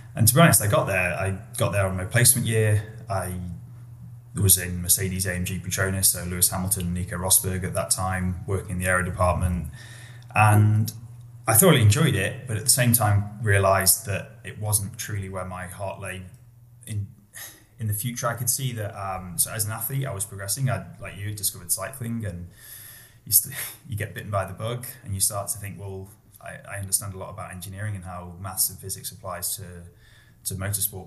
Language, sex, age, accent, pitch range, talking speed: English, male, 10-29, British, 95-115 Hz, 195 wpm